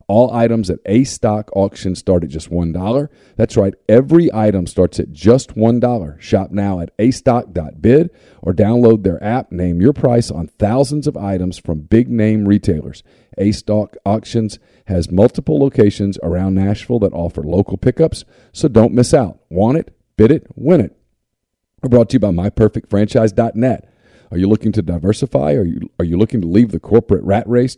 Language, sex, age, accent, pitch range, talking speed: English, male, 40-59, American, 95-120 Hz, 165 wpm